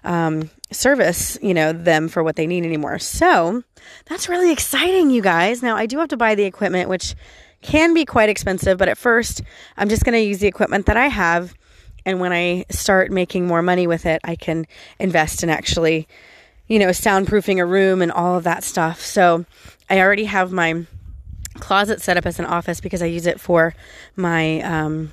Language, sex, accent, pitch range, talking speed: English, female, American, 170-230 Hz, 200 wpm